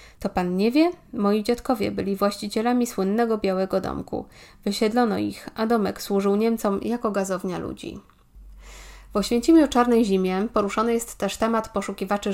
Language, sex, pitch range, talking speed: Polish, female, 195-220 Hz, 140 wpm